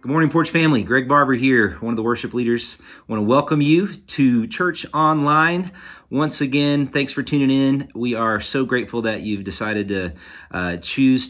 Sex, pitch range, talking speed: male, 90-125 Hz, 190 wpm